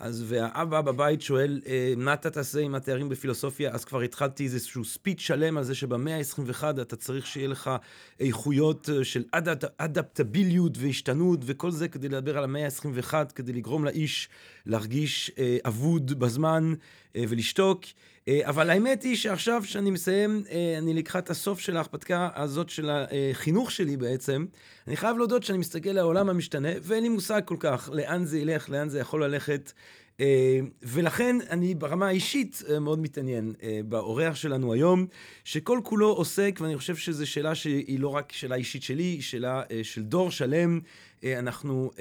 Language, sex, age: Hebrew, male, 40-59